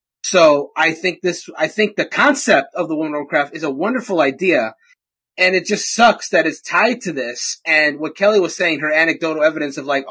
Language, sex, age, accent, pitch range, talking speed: English, male, 30-49, American, 145-200 Hz, 215 wpm